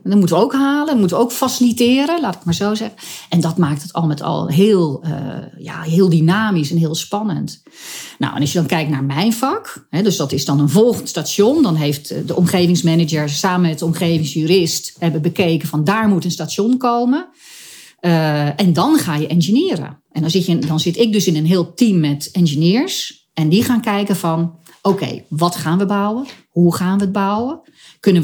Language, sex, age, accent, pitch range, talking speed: Dutch, female, 40-59, Dutch, 160-210 Hz, 200 wpm